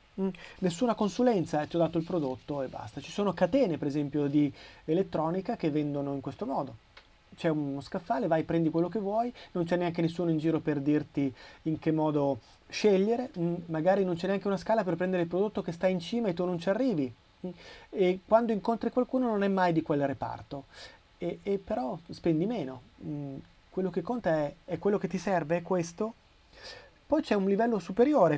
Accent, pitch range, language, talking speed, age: native, 150-190 Hz, Italian, 200 wpm, 30-49